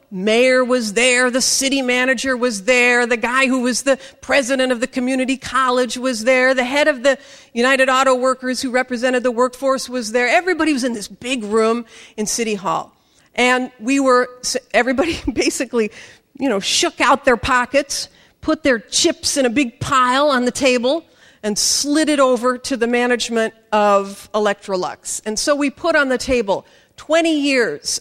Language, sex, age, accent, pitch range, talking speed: English, female, 50-69, American, 220-270 Hz, 175 wpm